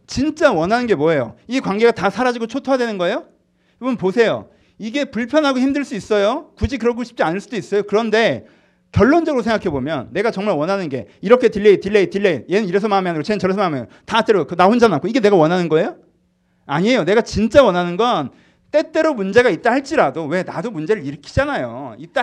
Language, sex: Korean, male